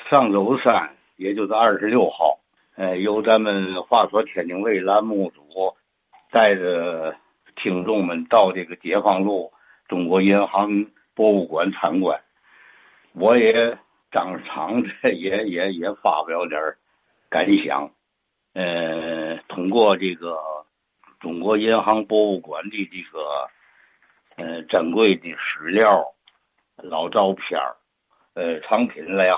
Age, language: 60-79, Chinese